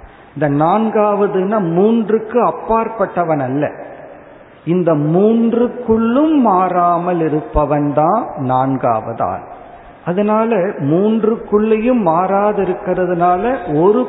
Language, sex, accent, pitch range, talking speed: Tamil, male, native, 140-190 Hz, 65 wpm